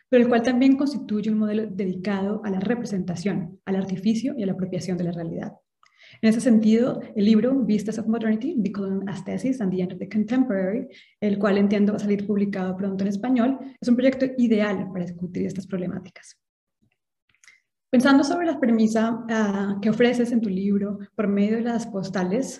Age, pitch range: 20-39, 195-235 Hz